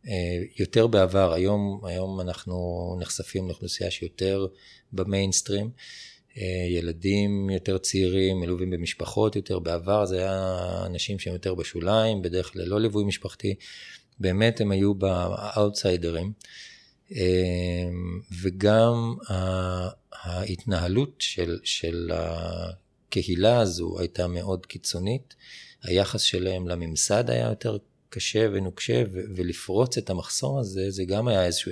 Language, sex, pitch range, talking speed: Hebrew, male, 90-100 Hz, 105 wpm